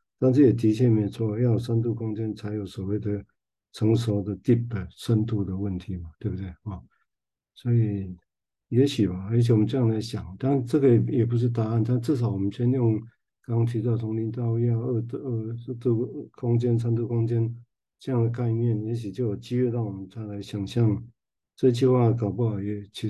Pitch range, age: 100-120 Hz, 50-69